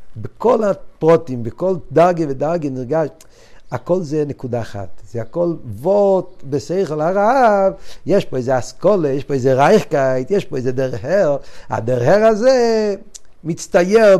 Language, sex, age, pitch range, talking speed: Hebrew, male, 50-69, 115-170 Hz, 125 wpm